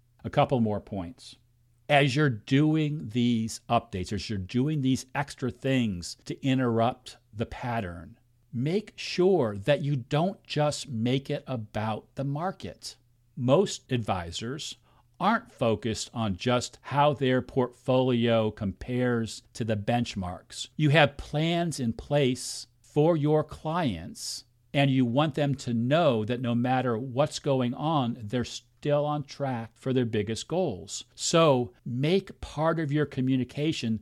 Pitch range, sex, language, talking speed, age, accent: 115-145 Hz, male, English, 135 wpm, 50-69, American